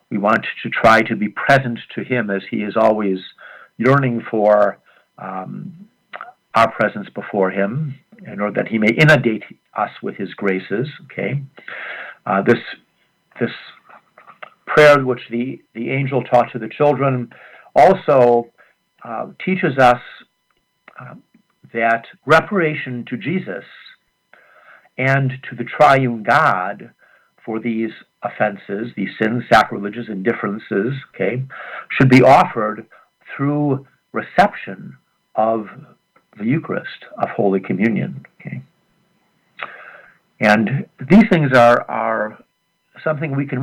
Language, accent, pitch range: English, American, 110-140 Hz